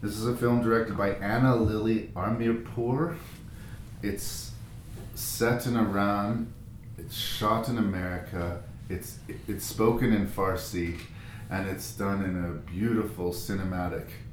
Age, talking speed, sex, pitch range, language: 30-49, 120 wpm, male, 95-115 Hz, English